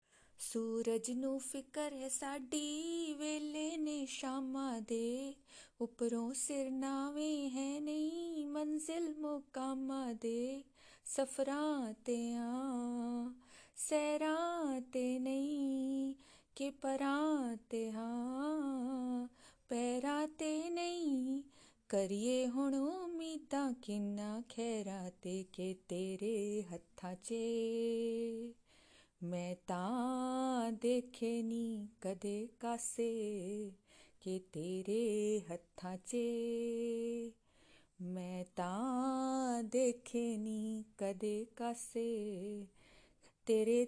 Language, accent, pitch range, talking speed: English, Indian, 220-275 Hz, 65 wpm